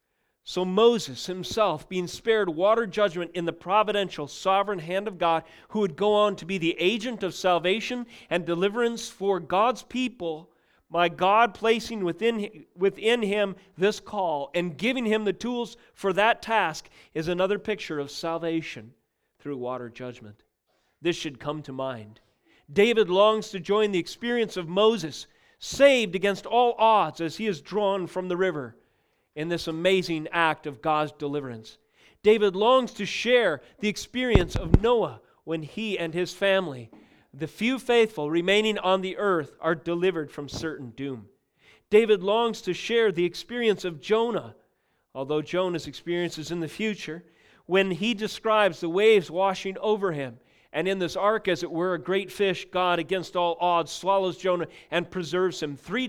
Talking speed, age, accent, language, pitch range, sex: 165 wpm, 40-59, American, English, 165-215 Hz, male